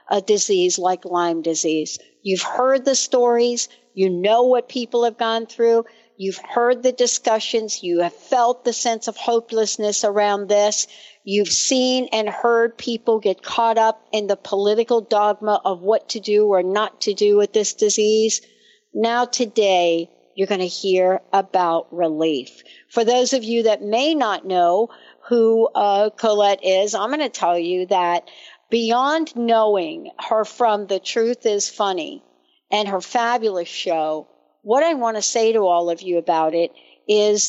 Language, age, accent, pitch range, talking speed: English, 60-79, American, 190-235 Hz, 165 wpm